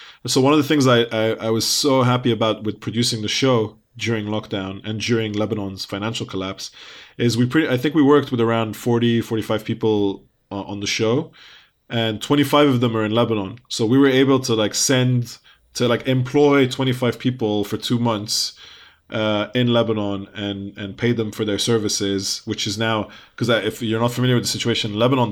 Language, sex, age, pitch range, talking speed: English, male, 20-39, 110-130 Hz, 195 wpm